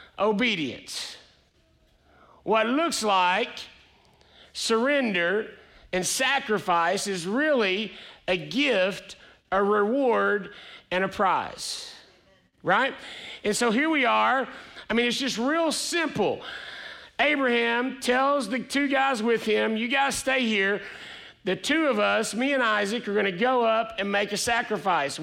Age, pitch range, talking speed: 50-69, 205-260 Hz, 130 wpm